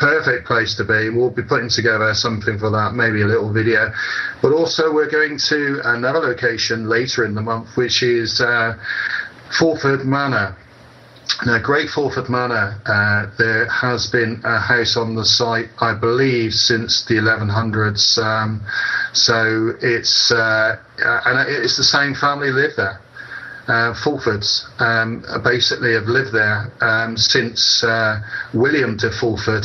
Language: English